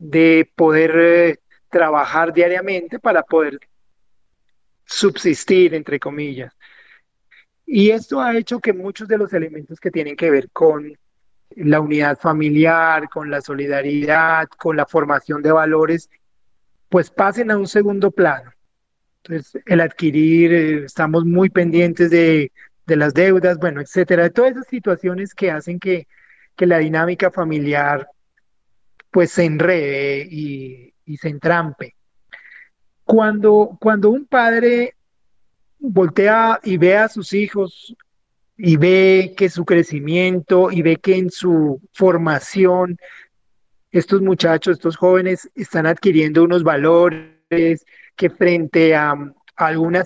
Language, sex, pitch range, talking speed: Spanish, male, 155-185 Hz, 125 wpm